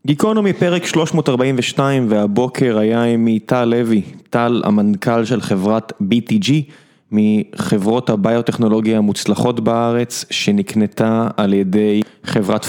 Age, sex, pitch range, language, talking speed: 20-39, male, 105-140 Hz, Hebrew, 100 wpm